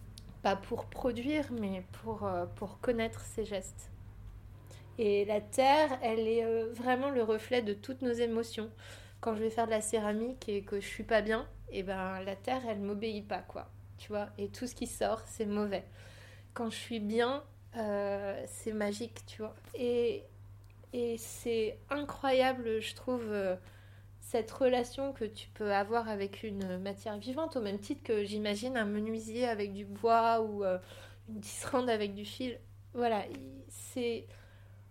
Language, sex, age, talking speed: French, female, 30-49, 170 wpm